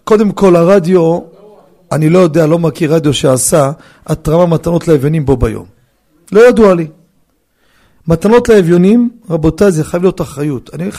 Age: 40-59